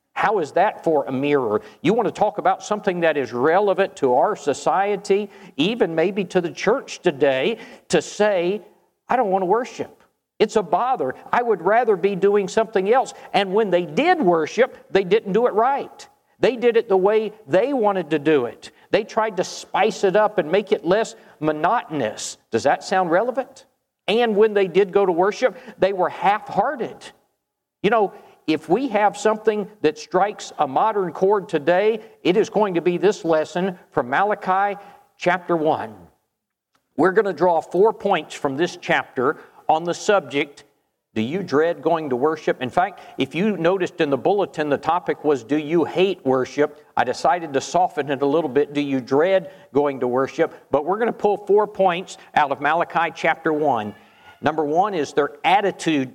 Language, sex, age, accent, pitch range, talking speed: English, male, 50-69, American, 160-210 Hz, 185 wpm